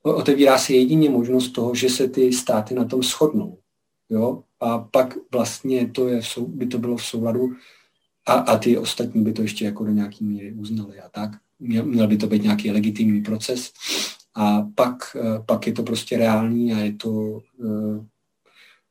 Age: 40-59